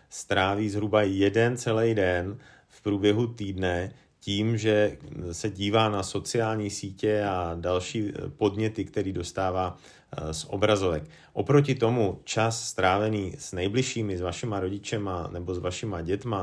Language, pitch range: Slovak, 95-110 Hz